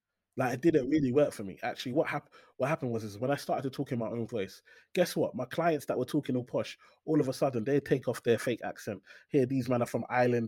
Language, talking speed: English, 275 wpm